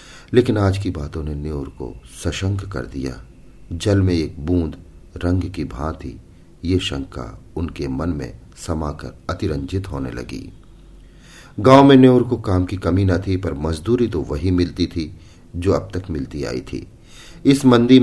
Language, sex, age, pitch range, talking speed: Hindi, male, 40-59, 80-105 Hz, 165 wpm